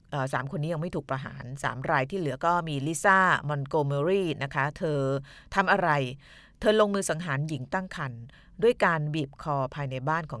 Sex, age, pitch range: female, 20-39, 140-175 Hz